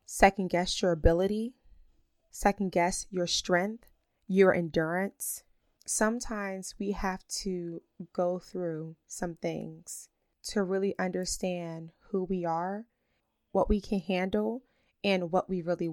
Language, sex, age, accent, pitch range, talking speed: English, female, 20-39, American, 175-200 Hz, 120 wpm